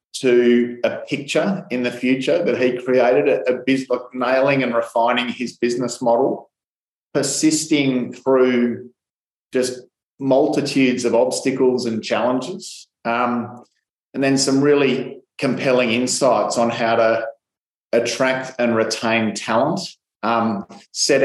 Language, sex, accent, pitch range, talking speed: English, male, Australian, 115-125 Hz, 120 wpm